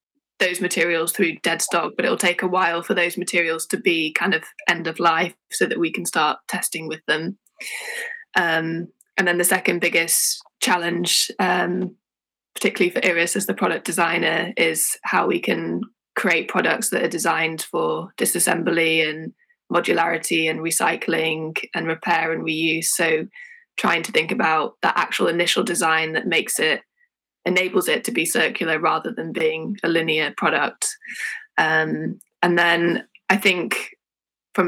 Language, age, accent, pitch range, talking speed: English, 20-39, British, 165-240 Hz, 155 wpm